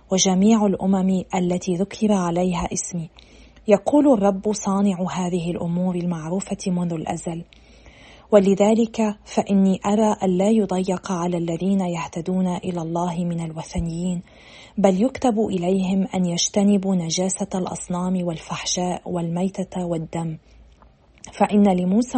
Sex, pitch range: female, 175-205 Hz